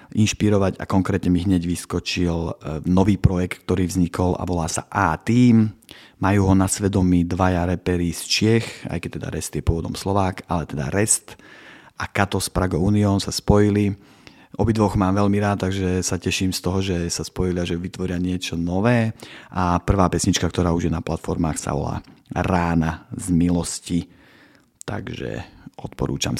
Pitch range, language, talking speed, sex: 85-100 Hz, Slovak, 160 wpm, male